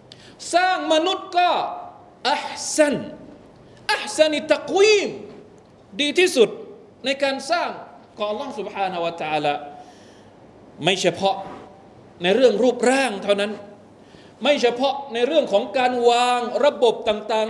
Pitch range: 205-320 Hz